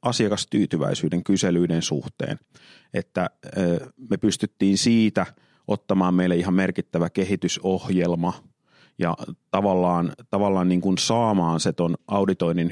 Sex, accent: male, native